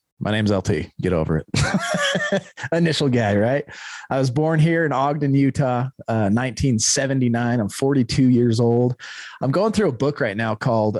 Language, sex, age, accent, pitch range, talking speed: English, male, 30-49, American, 110-150 Hz, 165 wpm